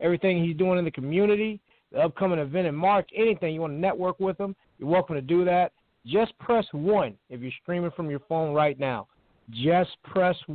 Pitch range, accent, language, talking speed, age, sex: 145-190 Hz, American, English, 205 wpm, 50-69, male